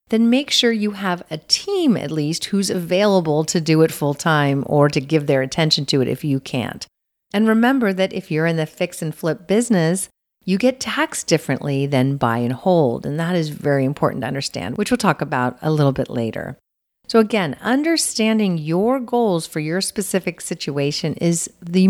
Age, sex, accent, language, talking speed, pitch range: 50-69, female, American, English, 190 wpm, 150-220 Hz